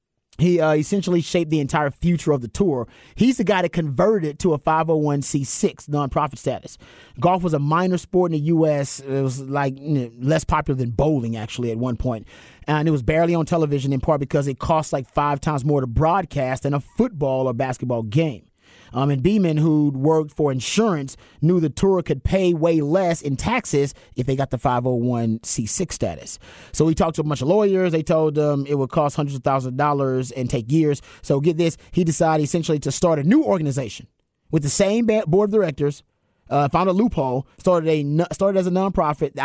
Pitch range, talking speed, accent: 135-170 Hz, 205 wpm, American